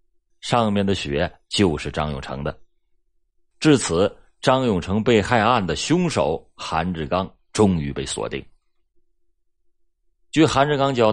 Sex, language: male, Chinese